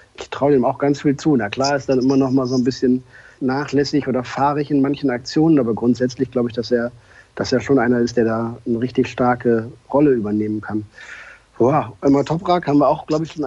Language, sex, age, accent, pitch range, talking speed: German, male, 50-69, German, 120-140 Hz, 230 wpm